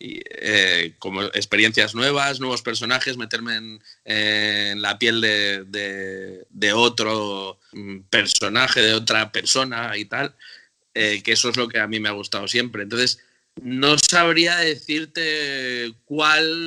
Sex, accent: male, Spanish